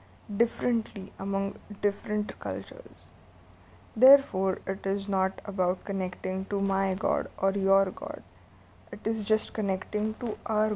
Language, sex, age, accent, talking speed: English, female, 20-39, Indian, 125 wpm